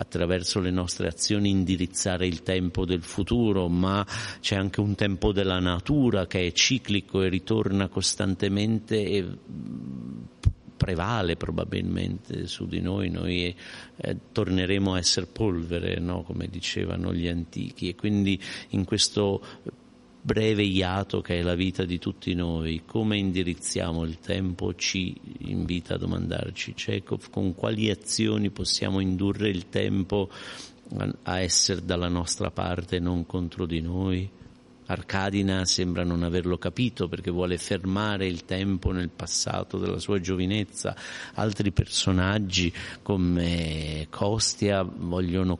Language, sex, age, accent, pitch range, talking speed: Italian, male, 50-69, native, 90-100 Hz, 125 wpm